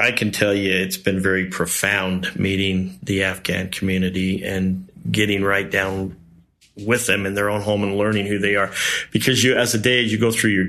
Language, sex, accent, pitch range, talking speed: English, male, American, 95-110 Hz, 210 wpm